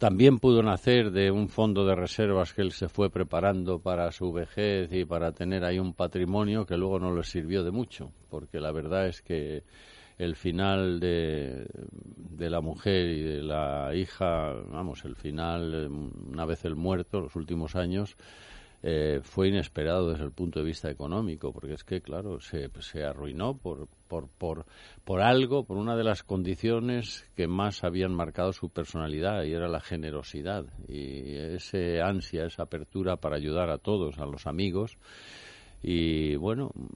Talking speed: 170 wpm